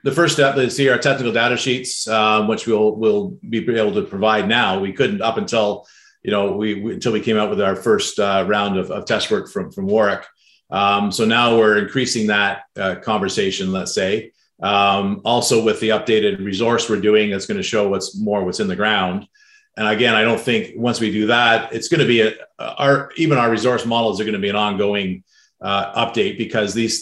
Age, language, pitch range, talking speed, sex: 40-59, English, 105-120 Hz, 220 wpm, male